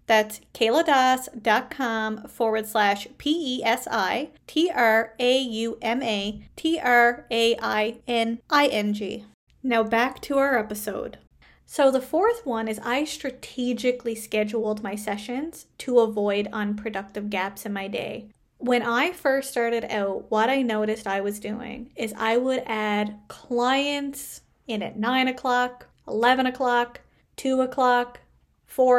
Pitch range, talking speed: 215-255 Hz, 110 wpm